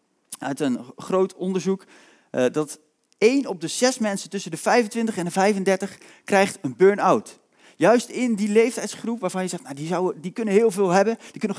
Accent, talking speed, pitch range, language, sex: Dutch, 185 wpm, 165-210 Hz, Dutch, male